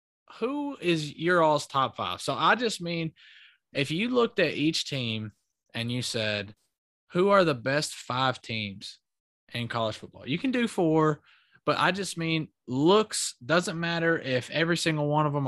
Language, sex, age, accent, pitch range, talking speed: English, male, 20-39, American, 120-165 Hz, 175 wpm